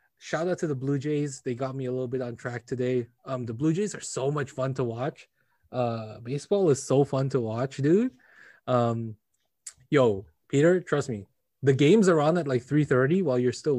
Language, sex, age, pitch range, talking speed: English, male, 20-39, 125-145 Hz, 210 wpm